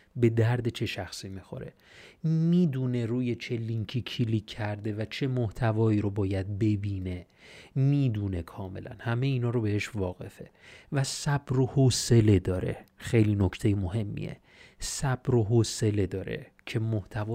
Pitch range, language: 105-135 Hz, Persian